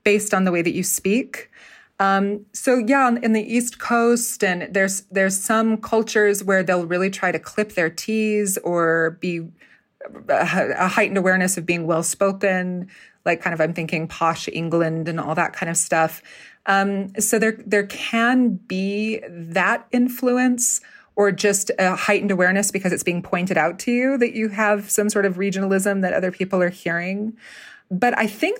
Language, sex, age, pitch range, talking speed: English, female, 30-49, 180-220 Hz, 175 wpm